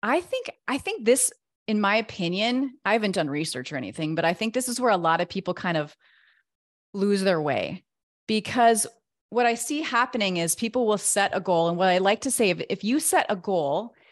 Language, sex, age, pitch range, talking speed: English, female, 30-49, 175-230 Hz, 215 wpm